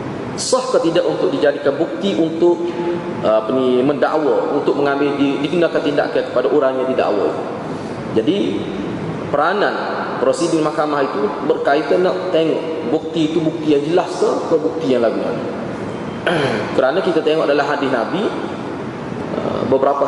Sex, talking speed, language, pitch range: male, 125 wpm, Malay, 145-195 Hz